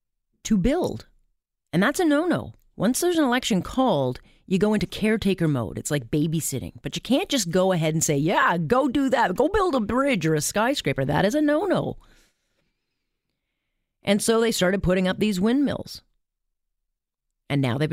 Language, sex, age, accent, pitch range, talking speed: English, female, 40-59, American, 145-200 Hz, 175 wpm